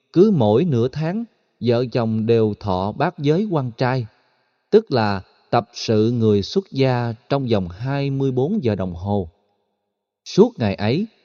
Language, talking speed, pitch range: Vietnamese, 150 wpm, 105-140 Hz